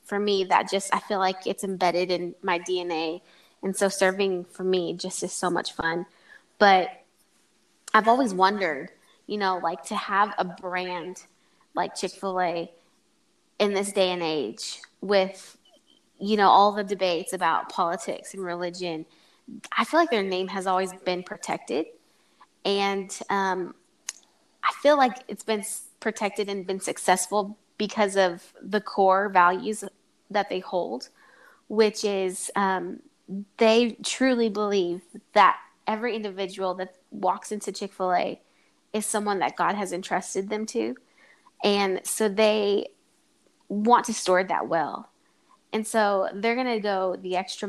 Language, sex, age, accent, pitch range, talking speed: English, female, 20-39, American, 185-210 Hz, 145 wpm